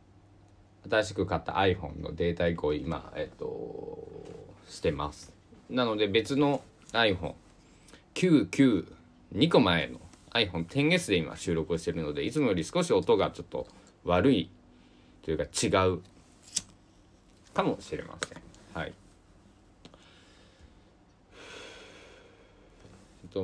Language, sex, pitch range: Japanese, male, 90-110 Hz